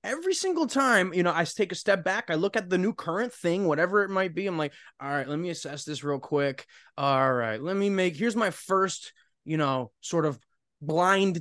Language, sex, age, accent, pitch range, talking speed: English, male, 20-39, American, 135-195 Hz, 230 wpm